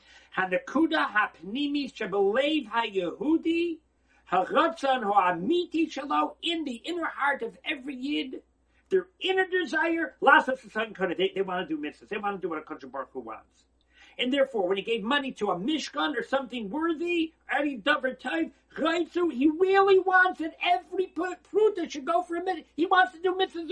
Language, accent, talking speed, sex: English, American, 130 wpm, male